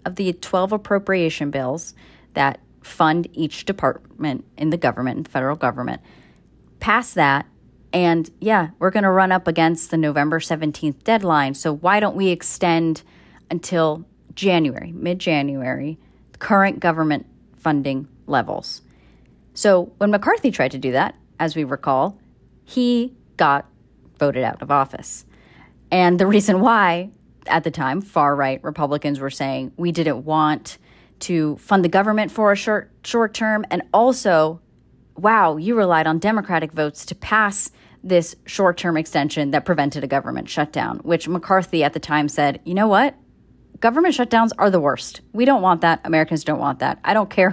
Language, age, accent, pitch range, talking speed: English, 30-49, American, 145-195 Hz, 160 wpm